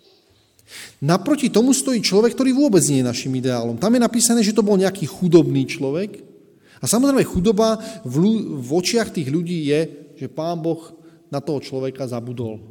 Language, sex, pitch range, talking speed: Slovak, male, 140-205 Hz, 160 wpm